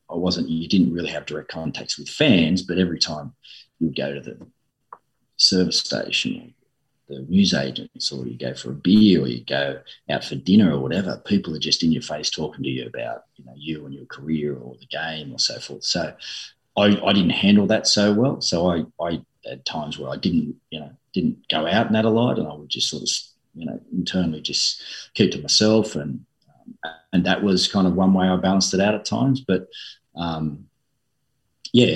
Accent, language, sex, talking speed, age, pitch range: Australian, English, male, 215 wpm, 40-59, 80-100 Hz